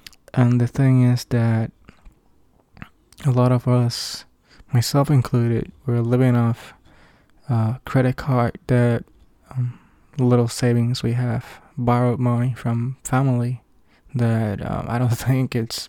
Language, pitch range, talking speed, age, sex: English, 120-130 Hz, 130 wpm, 20-39, male